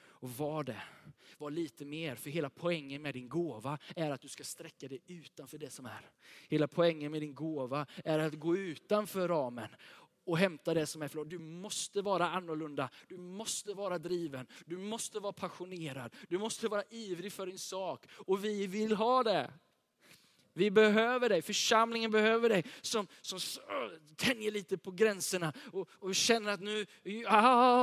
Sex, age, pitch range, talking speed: male, 20-39, 160-210 Hz, 170 wpm